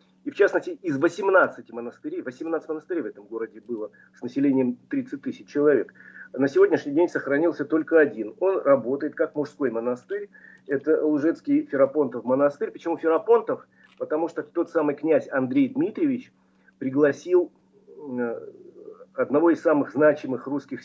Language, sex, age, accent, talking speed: Russian, male, 40-59, native, 135 wpm